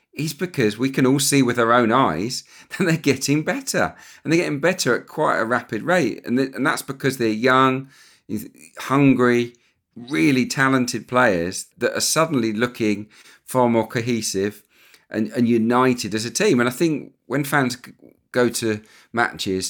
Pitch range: 105-130 Hz